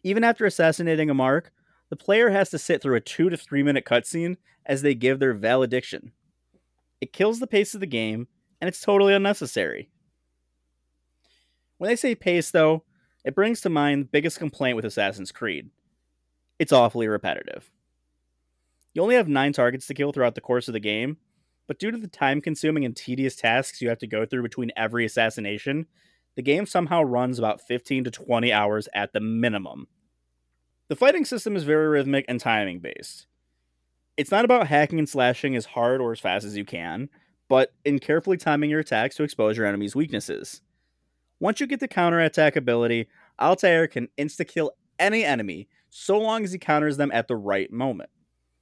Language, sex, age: English, male, 30-49